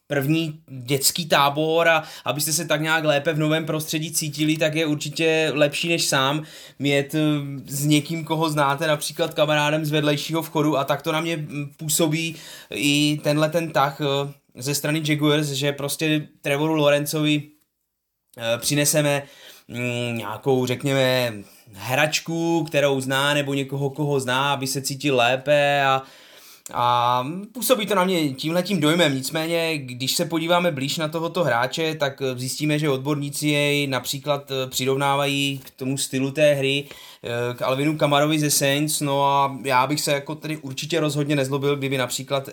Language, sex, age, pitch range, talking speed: Slovak, male, 20-39, 130-155 Hz, 150 wpm